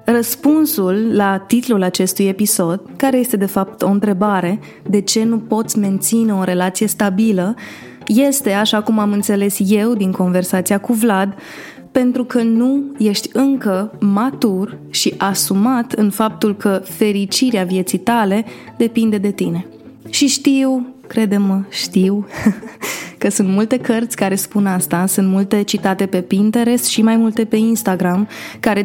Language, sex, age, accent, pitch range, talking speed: Romanian, female, 20-39, native, 195-230 Hz, 140 wpm